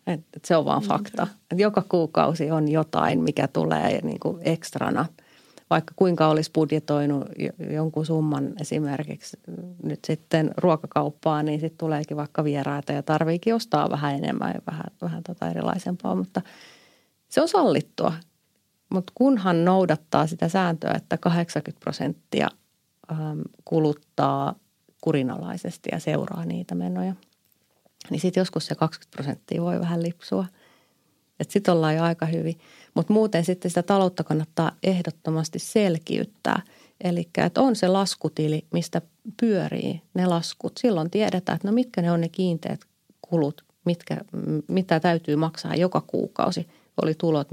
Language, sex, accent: Finnish, female, native